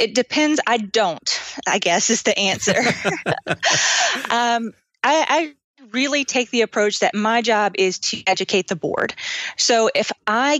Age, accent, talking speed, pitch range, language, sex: 20-39, American, 155 wpm, 190-240 Hz, English, female